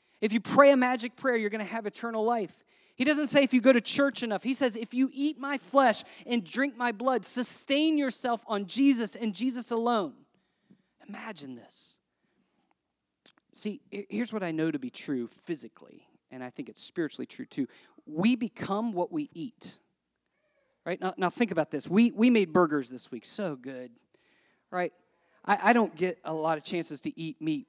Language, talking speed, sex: English, 190 wpm, male